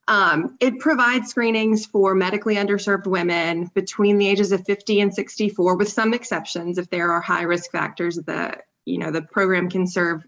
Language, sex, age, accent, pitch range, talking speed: English, female, 20-39, American, 180-215 Hz, 180 wpm